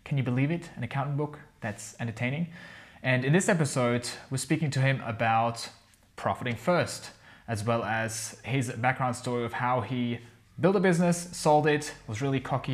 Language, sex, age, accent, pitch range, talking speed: English, male, 20-39, Australian, 110-135 Hz, 175 wpm